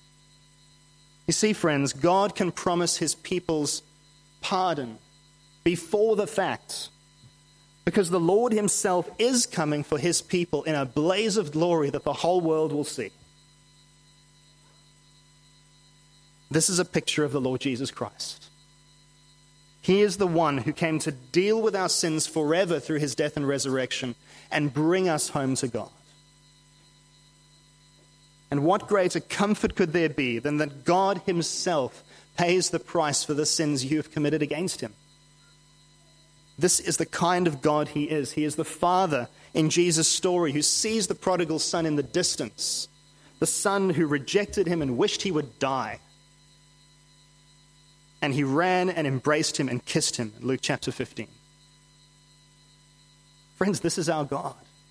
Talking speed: 150 wpm